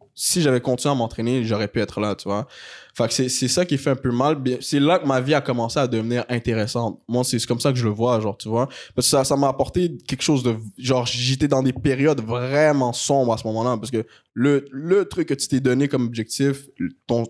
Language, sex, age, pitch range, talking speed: French, male, 20-39, 120-140 Hz, 255 wpm